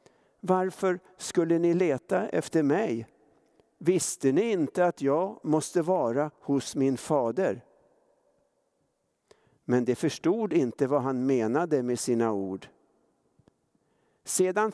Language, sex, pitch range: Swedish, male, 125-160 Hz